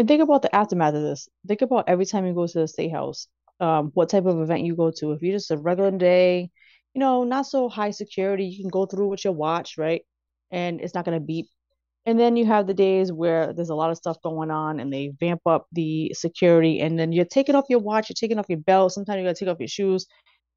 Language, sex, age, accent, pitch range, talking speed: English, female, 30-49, American, 160-200 Hz, 265 wpm